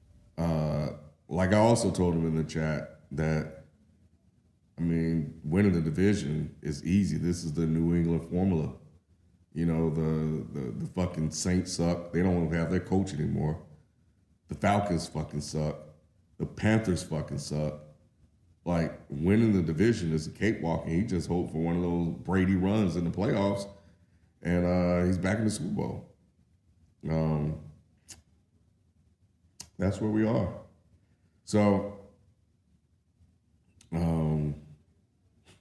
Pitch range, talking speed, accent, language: 80-95 Hz, 135 wpm, American, English